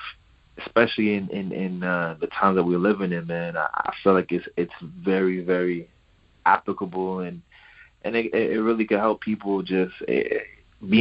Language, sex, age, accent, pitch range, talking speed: English, male, 20-39, American, 90-105 Hz, 170 wpm